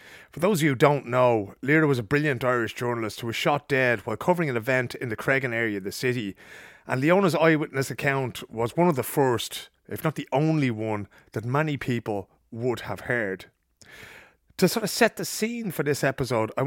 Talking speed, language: 210 wpm, English